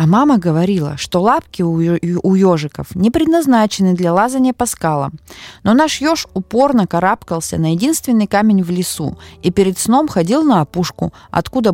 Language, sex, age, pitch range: Russian, female, 20-39, 150-220 Hz